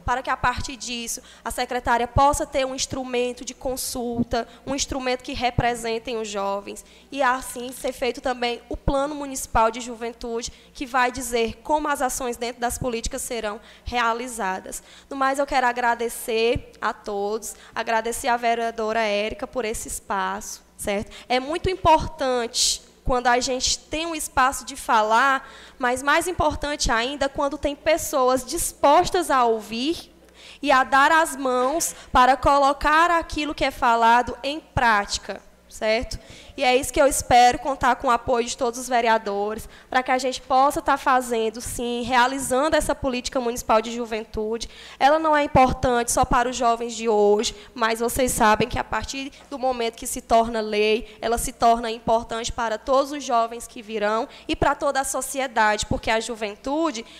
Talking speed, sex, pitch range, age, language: 165 wpm, female, 230-275 Hz, 10-29, Portuguese